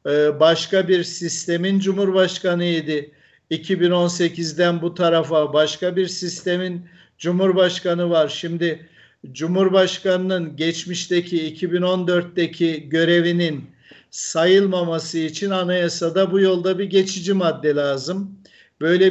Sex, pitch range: male, 160-180 Hz